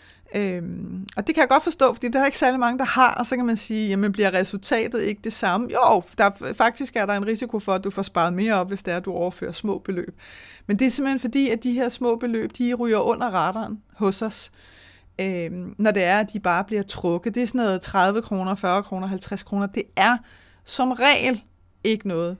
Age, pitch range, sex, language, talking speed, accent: 30-49, 190-235 Hz, female, Danish, 235 wpm, native